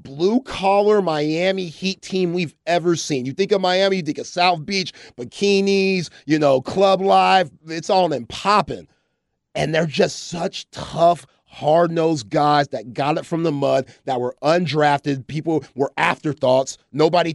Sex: male